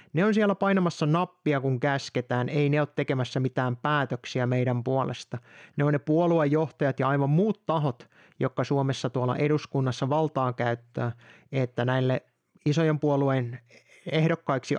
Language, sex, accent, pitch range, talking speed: Finnish, male, native, 130-175 Hz, 140 wpm